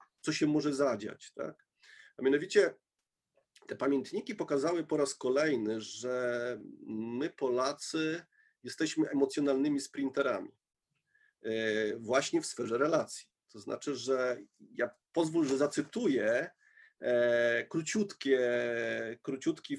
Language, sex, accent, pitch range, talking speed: Polish, male, native, 135-175 Hz, 90 wpm